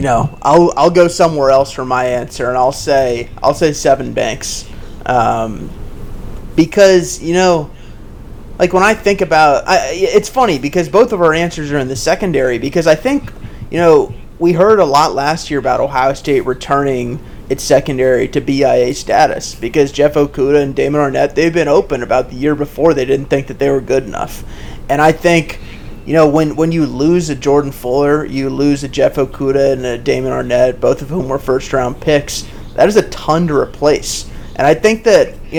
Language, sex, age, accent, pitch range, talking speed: English, male, 30-49, American, 135-165 Hz, 200 wpm